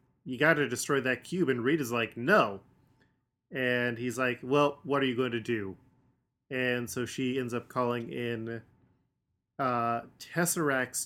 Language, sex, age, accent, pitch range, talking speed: English, male, 20-39, American, 115-130 Hz, 165 wpm